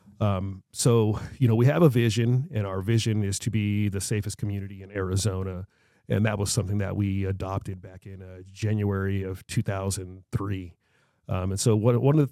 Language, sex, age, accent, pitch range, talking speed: English, male, 40-59, American, 95-115 Hz, 185 wpm